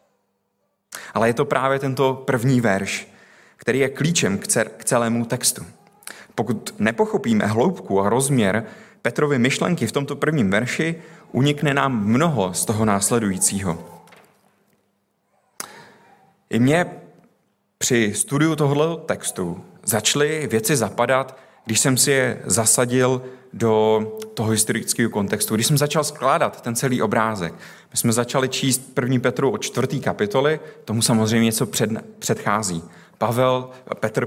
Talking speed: 125 wpm